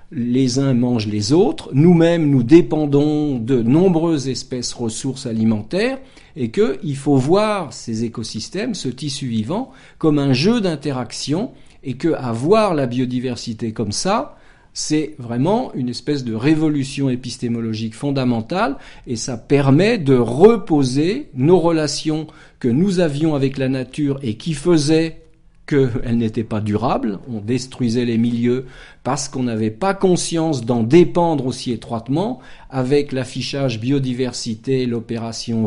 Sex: male